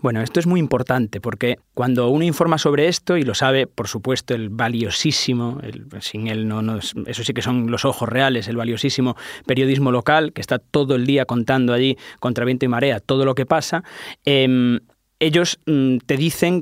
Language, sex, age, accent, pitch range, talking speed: Spanish, male, 20-39, Spanish, 120-150 Hz, 190 wpm